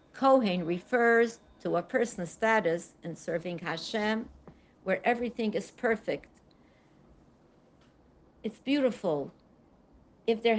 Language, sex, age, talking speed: English, female, 60-79, 95 wpm